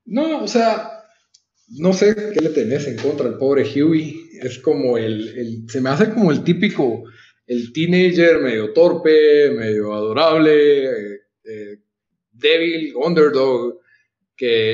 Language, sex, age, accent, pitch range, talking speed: Spanish, male, 40-59, Mexican, 120-180 Hz, 140 wpm